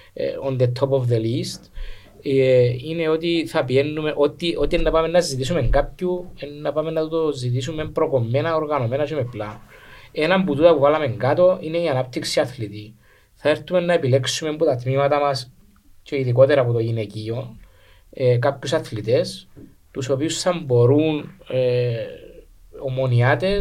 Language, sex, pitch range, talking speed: Greek, male, 120-160 Hz, 145 wpm